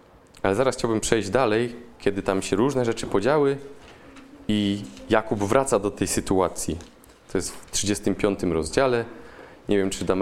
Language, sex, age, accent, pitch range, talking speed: Polish, male, 20-39, native, 100-135 Hz, 155 wpm